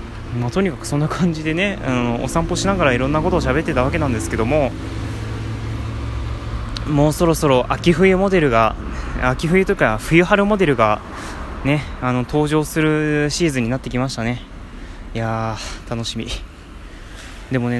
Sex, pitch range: male, 110-150 Hz